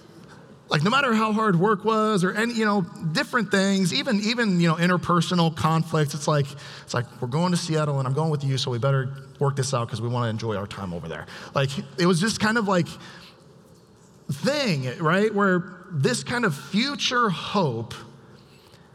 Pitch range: 130-190 Hz